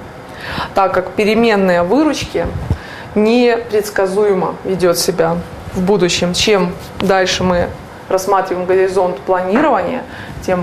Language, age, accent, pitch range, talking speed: Russian, 20-39, native, 195-245 Hz, 90 wpm